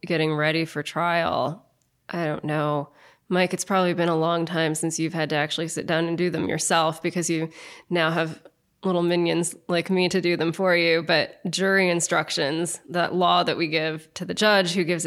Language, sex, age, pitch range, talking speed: English, female, 20-39, 170-190 Hz, 205 wpm